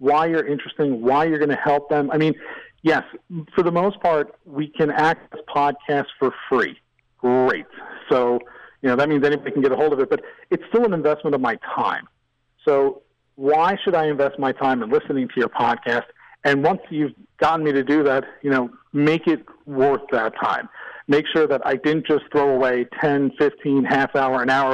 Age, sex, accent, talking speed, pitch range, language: 40-59, male, American, 205 wpm, 135-170 Hz, English